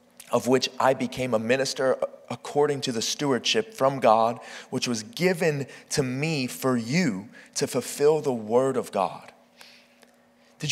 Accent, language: American, English